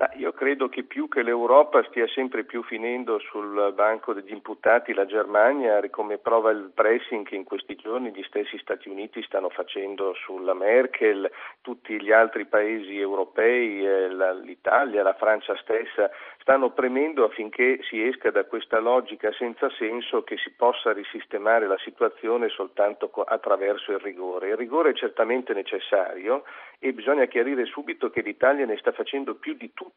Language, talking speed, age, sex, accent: Italian, 155 wpm, 50-69, male, native